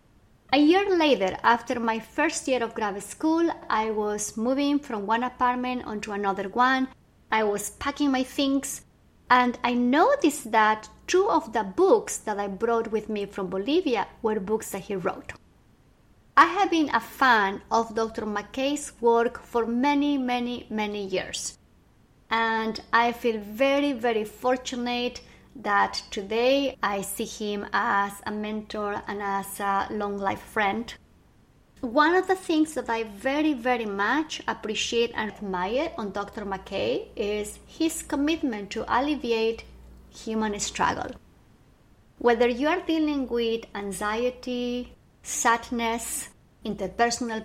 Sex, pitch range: female, 215-260 Hz